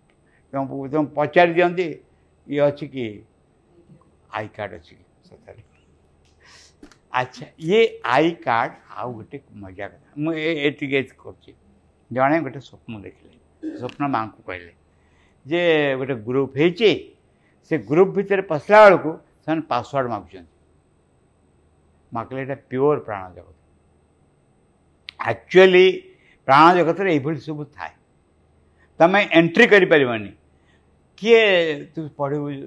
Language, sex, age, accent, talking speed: English, male, 60-79, Indian, 90 wpm